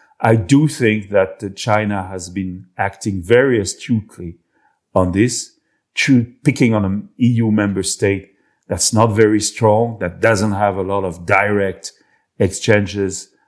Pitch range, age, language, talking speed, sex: 95-115 Hz, 50-69, English, 135 wpm, male